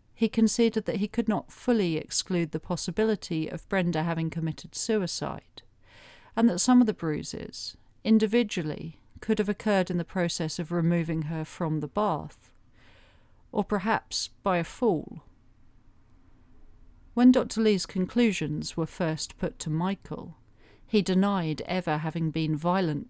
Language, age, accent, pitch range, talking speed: English, 40-59, British, 155-195 Hz, 140 wpm